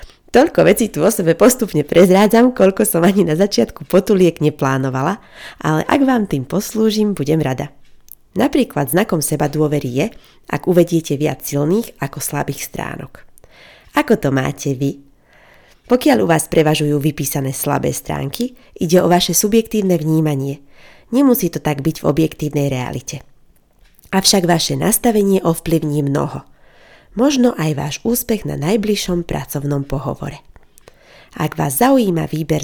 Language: Slovak